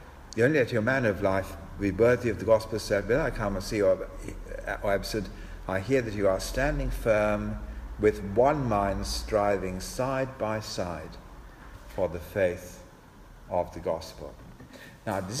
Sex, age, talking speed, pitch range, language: male, 50-69, 170 wpm, 95-115 Hz, English